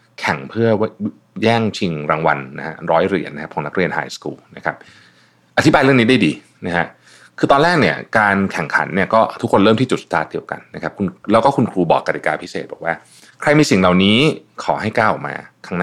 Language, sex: Thai, male